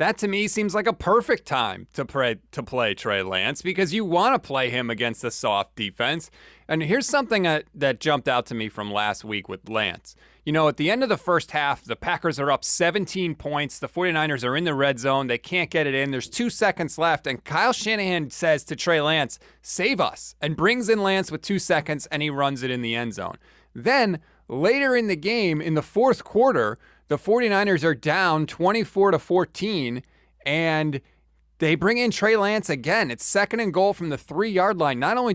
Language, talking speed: English, 210 wpm